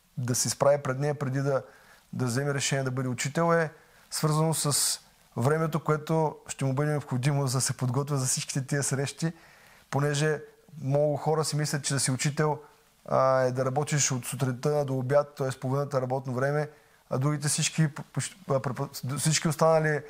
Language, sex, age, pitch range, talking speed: Bulgarian, male, 20-39, 135-155 Hz, 165 wpm